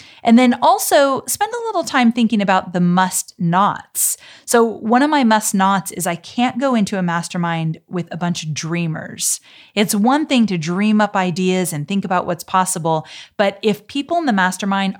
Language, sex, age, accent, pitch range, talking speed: English, female, 30-49, American, 175-230 Hz, 185 wpm